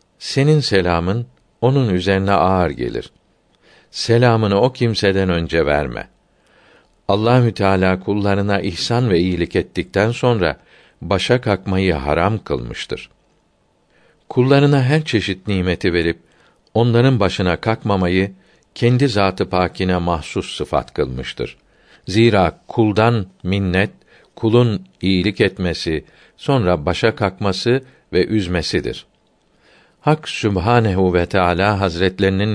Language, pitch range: Turkish, 90-115 Hz